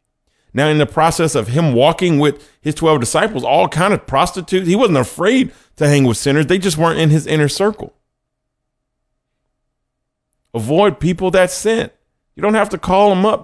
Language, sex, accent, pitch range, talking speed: English, male, American, 145-195 Hz, 180 wpm